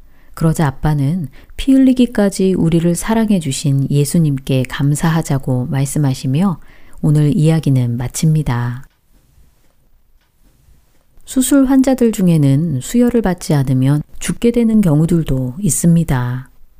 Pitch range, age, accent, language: 135-185 Hz, 40-59, native, Korean